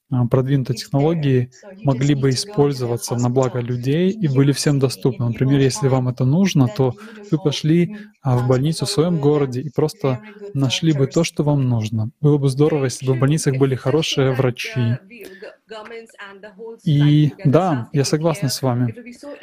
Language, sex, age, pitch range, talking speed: Russian, male, 20-39, 135-165 Hz, 150 wpm